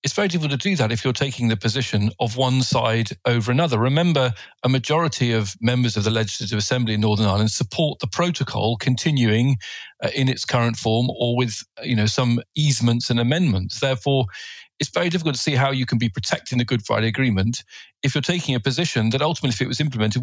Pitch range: 115-150 Hz